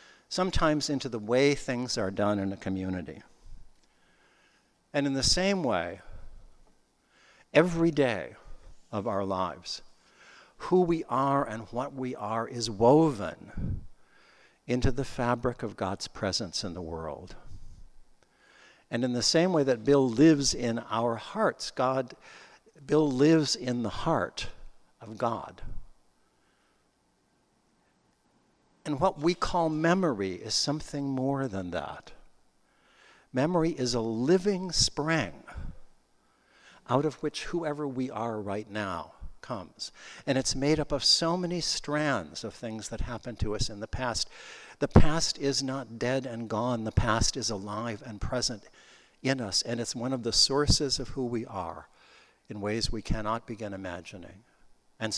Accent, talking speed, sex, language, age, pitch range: American, 140 wpm, male, English, 60-79, 110-145 Hz